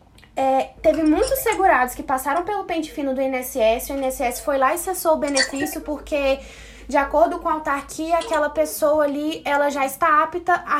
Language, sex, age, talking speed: Portuguese, female, 10-29, 180 wpm